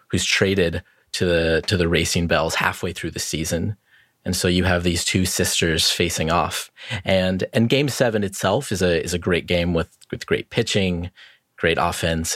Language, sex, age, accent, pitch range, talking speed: English, male, 30-49, American, 90-115 Hz, 185 wpm